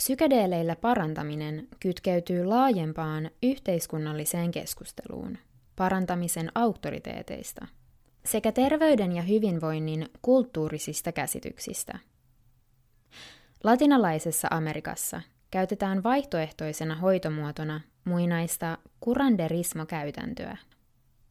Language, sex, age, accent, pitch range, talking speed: Finnish, female, 20-39, native, 155-200 Hz, 60 wpm